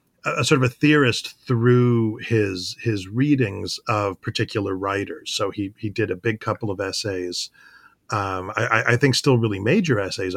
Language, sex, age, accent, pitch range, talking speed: English, male, 40-59, American, 100-125 Hz, 175 wpm